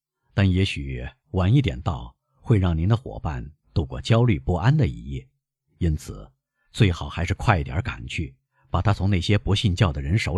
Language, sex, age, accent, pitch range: Chinese, male, 50-69, native, 95-135 Hz